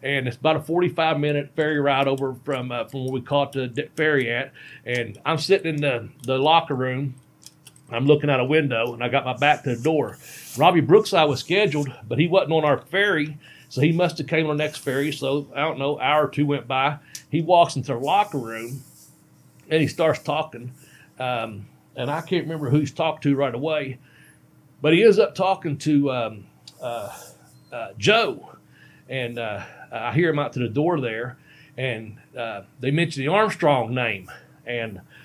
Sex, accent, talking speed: male, American, 200 wpm